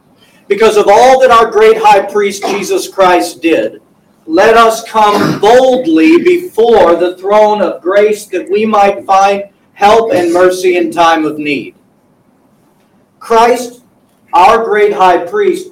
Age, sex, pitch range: 50-69, male, 175-270 Hz